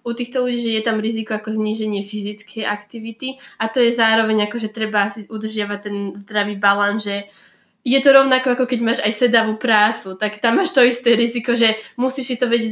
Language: Slovak